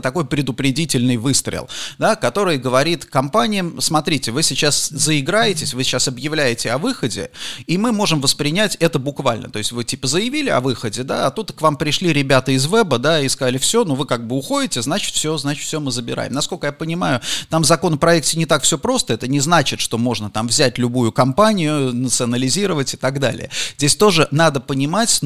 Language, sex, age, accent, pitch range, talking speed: Russian, male, 30-49, native, 125-160 Hz, 190 wpm